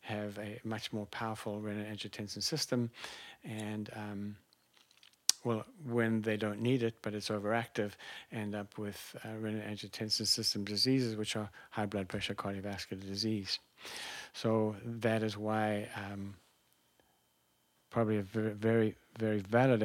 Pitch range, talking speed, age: 100-110 Hz, 130 wpm, 50-69